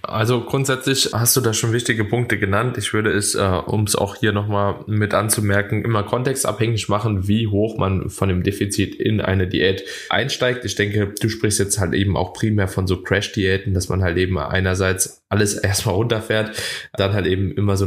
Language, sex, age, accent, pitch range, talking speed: German, male, 10-29, German, 95-110 Hz, 190 wpm